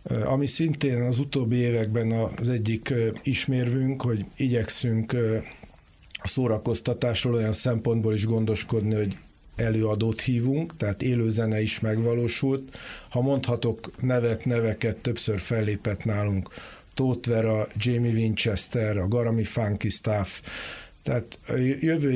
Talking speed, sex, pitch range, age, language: 110 wpm, male, 110-125 Hz, 50-69, Hungarian